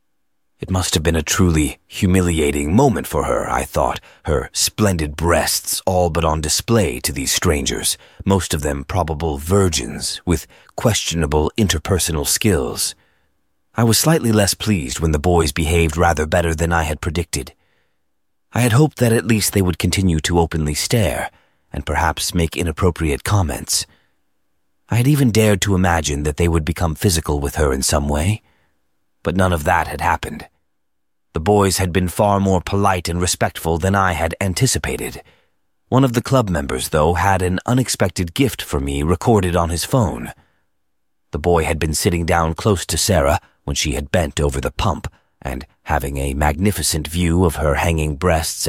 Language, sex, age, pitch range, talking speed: English, male, 30-49, 80-100 Hz, 170 wpm